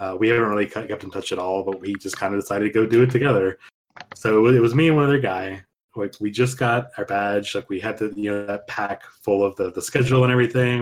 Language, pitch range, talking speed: English, 100-125 Hz, 270 wpm